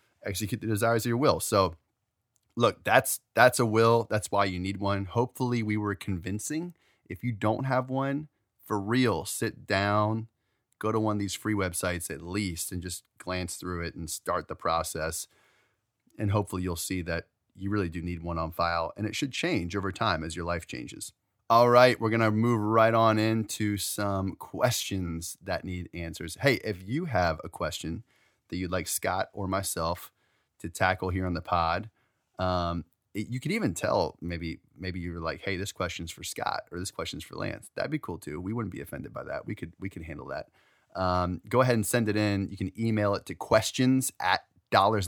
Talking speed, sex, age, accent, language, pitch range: 205 wpm, male, 30-49, American, English, 85-110 Hz